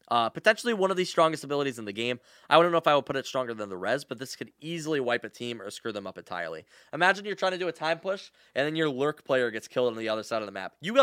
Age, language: 10-29, English